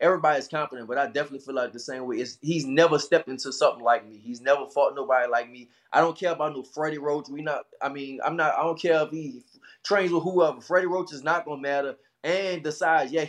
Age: 20-39